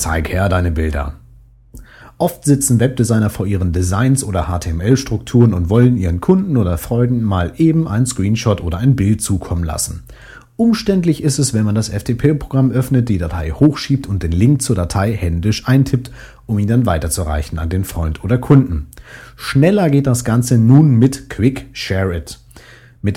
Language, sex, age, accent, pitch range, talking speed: German, male, 40-59, German, 95-135 Hz, 165 wpm